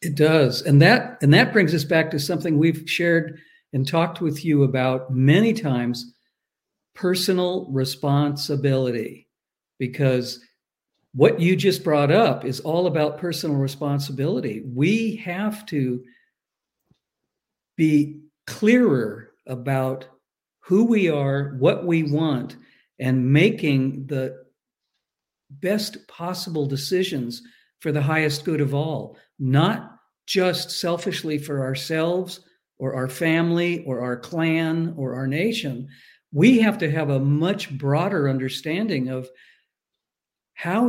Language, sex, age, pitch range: English, male, 50-69, 135-180 Hz